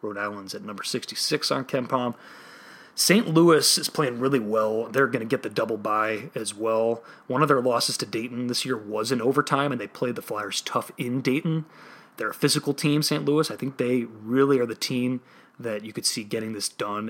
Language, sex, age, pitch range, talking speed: English, male, 30-49, 110-140 Hz, 215 wpm